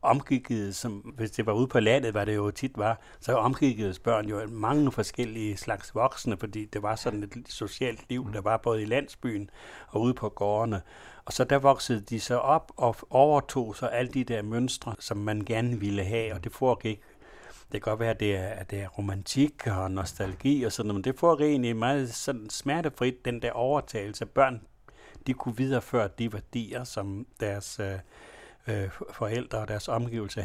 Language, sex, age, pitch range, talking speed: Danish, male, 60-79, 105-135 Hz, 190 wpm